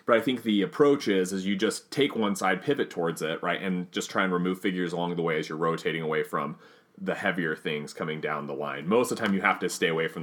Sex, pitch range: male, 90-115 Hz